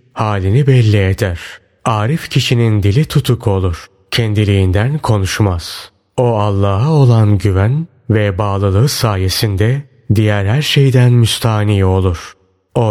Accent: native